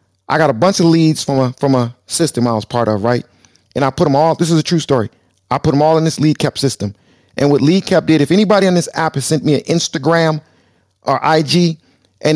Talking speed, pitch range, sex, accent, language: 250 wpm, 125-155 Hz, male, American, English